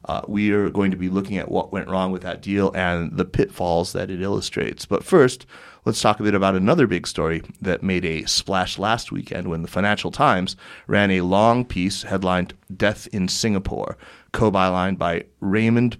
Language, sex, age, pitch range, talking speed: English, male, 30-49, 90-105 Hz, 190 wpm